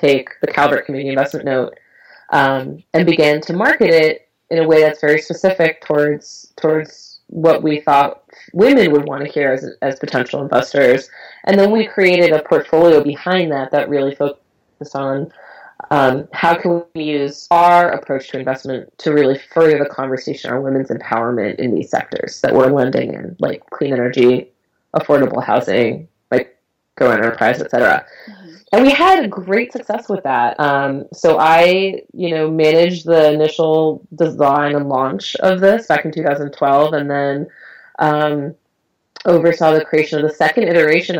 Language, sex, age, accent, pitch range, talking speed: English, female, 30-49, American, 140-165 Hz, 165 wpm